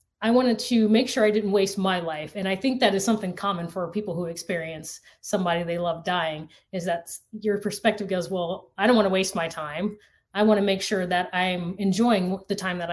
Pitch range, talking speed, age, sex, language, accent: 175-215 Hz, 220 wpm, 30-49, female, English, American